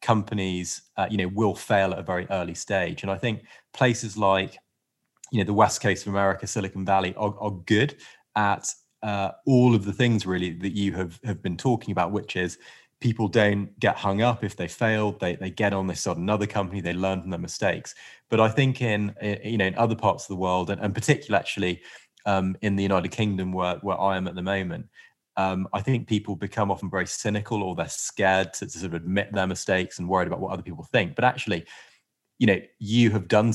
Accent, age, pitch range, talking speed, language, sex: British, 30-49, 95-110 Hz, 225 wpm, English, male